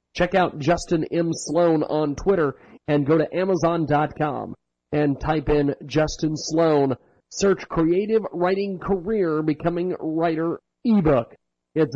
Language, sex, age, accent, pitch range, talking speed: English, male, 40-59, American, 130-175 Hz, 120 wpm